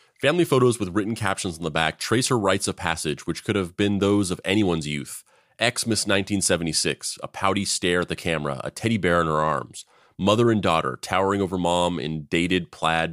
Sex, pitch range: male, 85-105 Hz